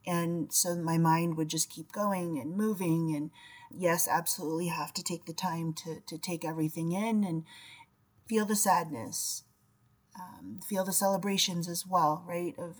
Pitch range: 165-195 Hz